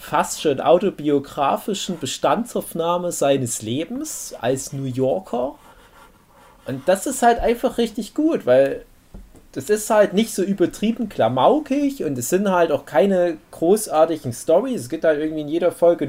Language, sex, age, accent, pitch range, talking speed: German, male, 30-49, German, 135-210 Hz, 145 wpm